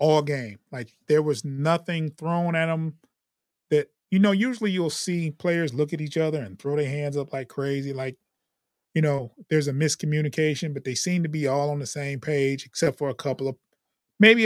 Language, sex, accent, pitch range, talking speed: English, male, American, 140-175 Hz, 205 wpm